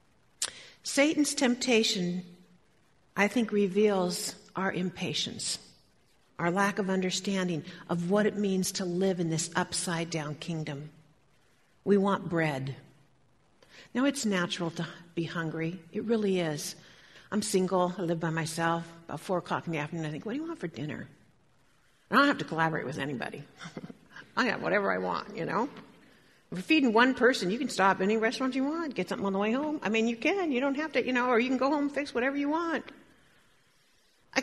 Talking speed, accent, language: 185 wpm, American, English